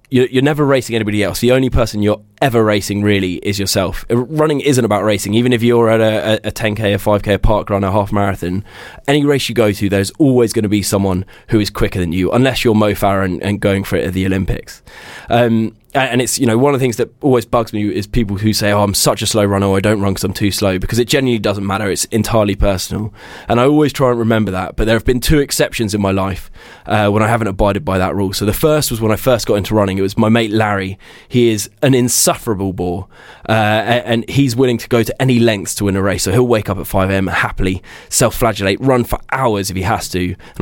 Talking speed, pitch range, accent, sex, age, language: 255 wpm, 100-120 Hz, British, male, 10-29, English